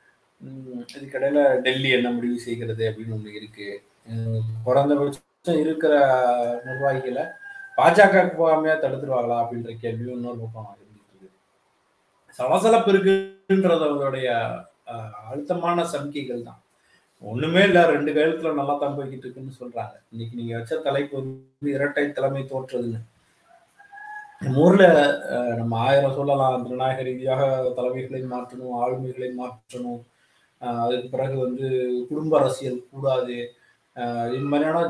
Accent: native